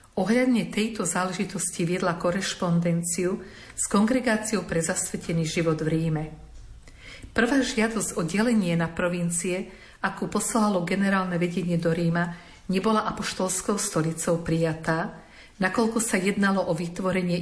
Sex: female